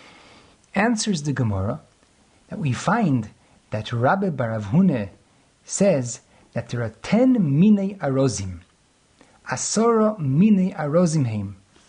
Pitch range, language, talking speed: 120-195 Hz, English, 95 wpm